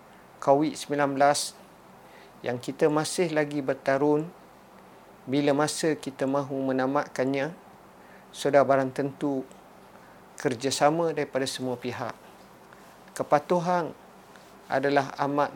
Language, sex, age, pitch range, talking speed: Indonesian, male, 50-69, 135-165 Hz, 85 wpm